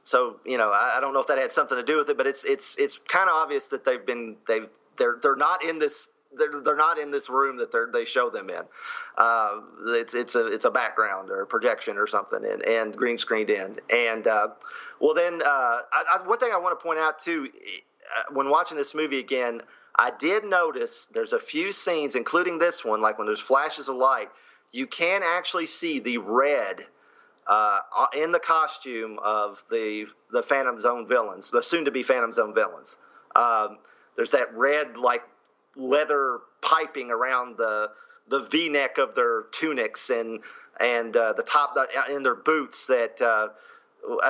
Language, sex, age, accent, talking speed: English, male, 40-59, American, 195 wpm